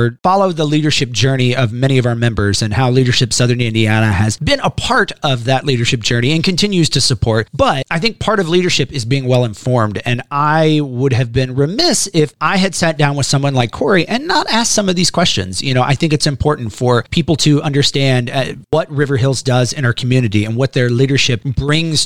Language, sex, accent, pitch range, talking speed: English, male, American, 125-160 Hz, 215 wpm